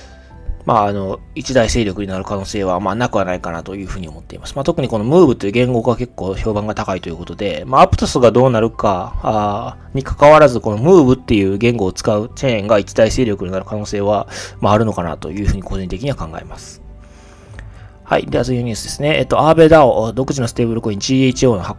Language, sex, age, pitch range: Japanese, male, 20-39, 95-135 Hz